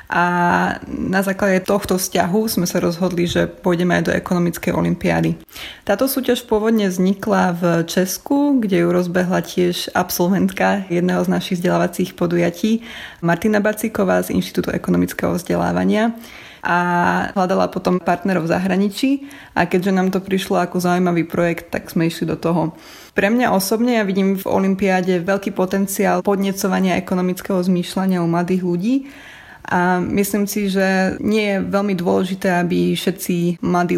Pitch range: 175-195 Hz